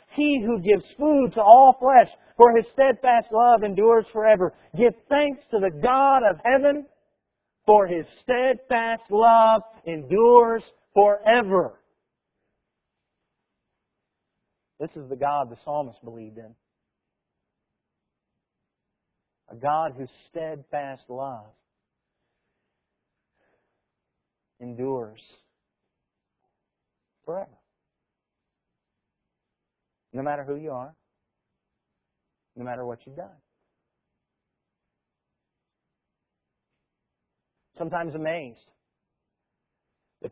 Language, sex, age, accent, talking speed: English, male, 50-69, American, 80 wpm